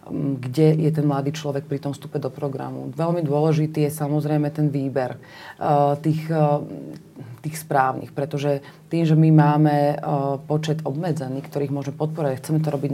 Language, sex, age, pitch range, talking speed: Slovak, female, 30-49, 145-155 Hz, 160 wpm